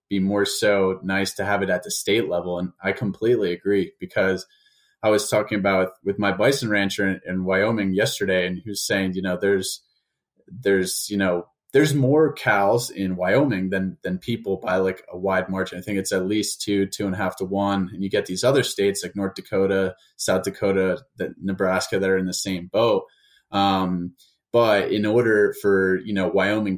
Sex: male